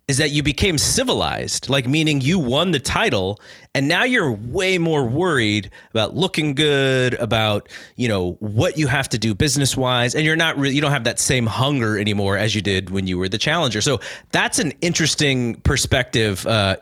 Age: 30-49